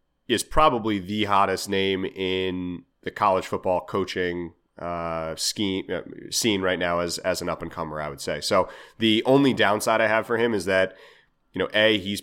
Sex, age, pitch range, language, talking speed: male, 30-49, 90-105 Hz, English, 190 wpm